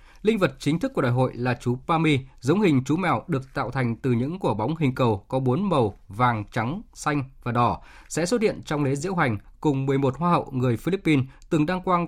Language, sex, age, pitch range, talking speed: Vietnamese, male, 20-39, 130-175 Hz, 235 wpm